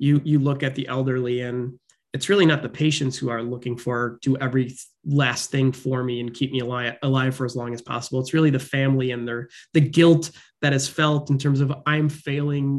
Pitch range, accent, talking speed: 125-145 Hz, American, 230 wpm